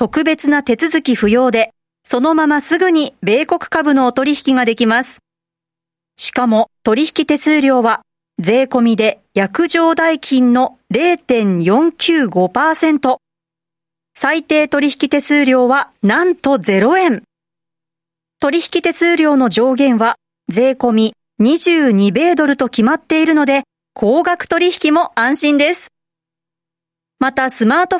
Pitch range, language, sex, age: 215-310 Hz, Japanese, female, 40-59